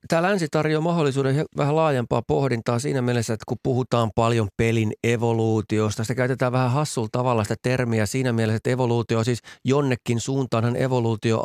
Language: Finnish